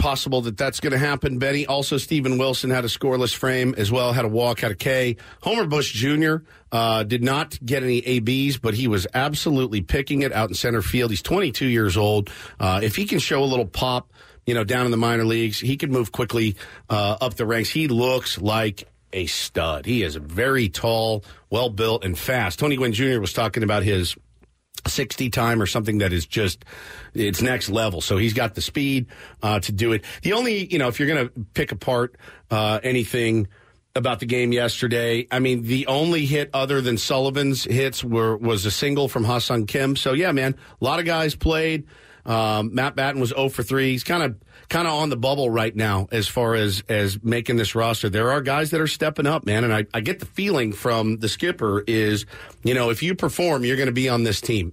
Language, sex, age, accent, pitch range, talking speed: English, male, 50-69, American, 110-140 Hz, 220 wpm